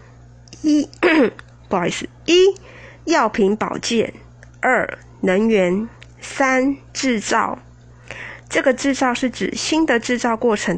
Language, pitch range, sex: Chinese, 185-275 Hz, female